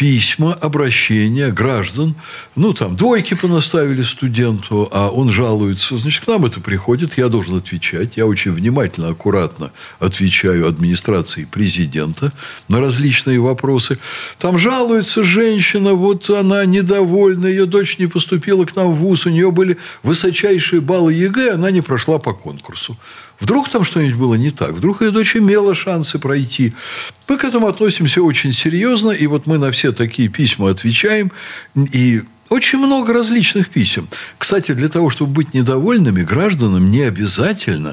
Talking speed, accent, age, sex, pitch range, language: 150 wpm, native, 60-79, male, 115-190 Hz, Russian